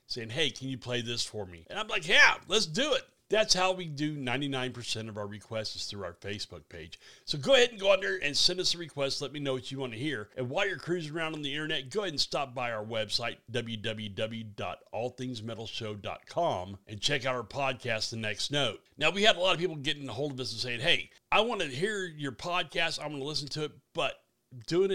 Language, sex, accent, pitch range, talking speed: English, male, American, 110-145 Hz, 240 wpm